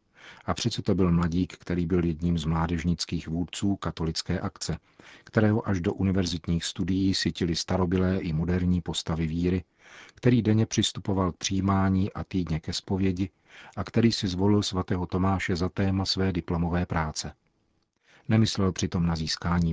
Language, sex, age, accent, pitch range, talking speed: Czech, male, 40-59, native, 85-100 Hz, 145 wpm